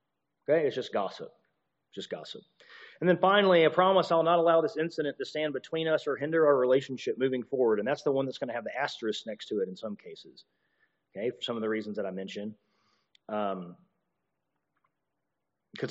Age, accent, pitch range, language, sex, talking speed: 40-59, American, 120-165 Hz, English, male, 195 wpm